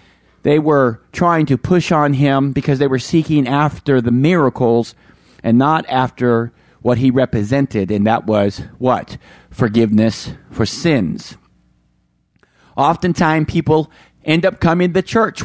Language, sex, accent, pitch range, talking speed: English, male, American, 130-170 Hz, 130 wpm